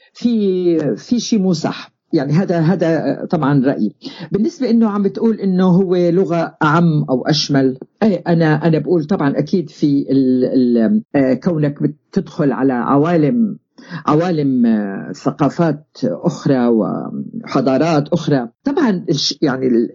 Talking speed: 115 wpm